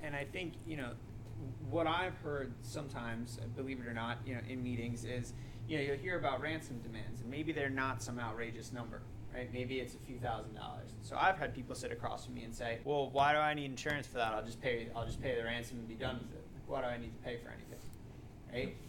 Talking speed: 250 wpm